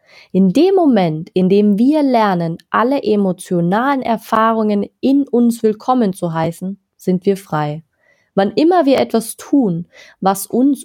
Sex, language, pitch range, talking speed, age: female, German, 180-235 Hz, 140 wpm, 30-49